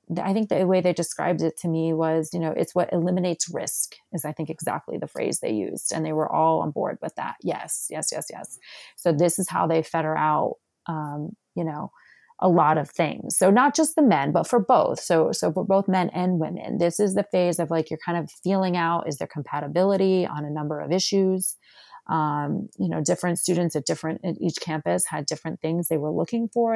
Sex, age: female, 30-49